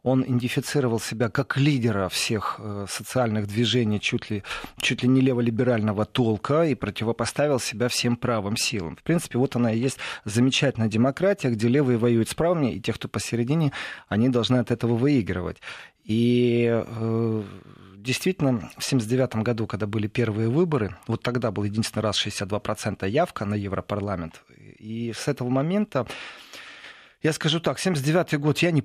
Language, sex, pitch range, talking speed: Russian, male, 115-145 Hz, 150 wpm